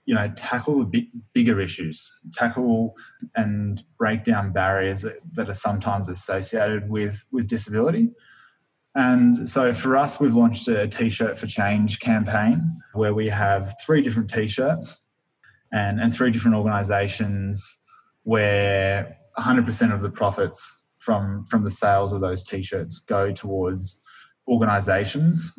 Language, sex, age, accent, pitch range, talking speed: English, male, 20-39, Australian, 100-115 Hz, 130 wpm